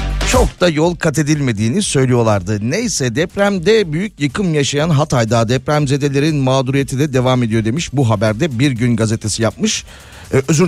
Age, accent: 40-59, native